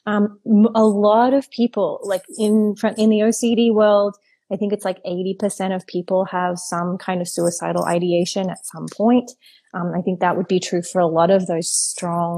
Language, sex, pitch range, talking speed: English, female, 180-230 Hz, 200 wpm